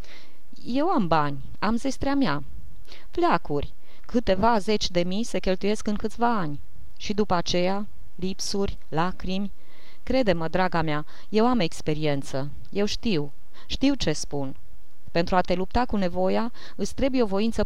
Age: 20-39